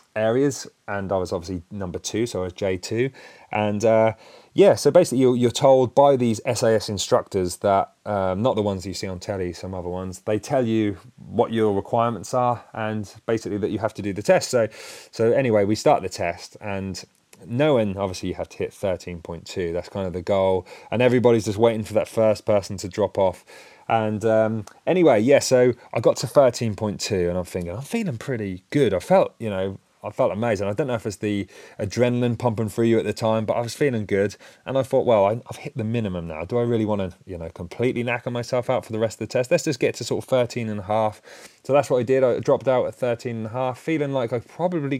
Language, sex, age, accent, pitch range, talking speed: English, male, 30-49, British, 100-125 Hz, 235 wpm